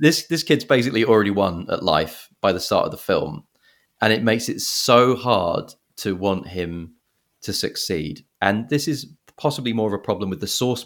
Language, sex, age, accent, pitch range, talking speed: English, male, 30-49, British, 95-120 Hz, 200 wpm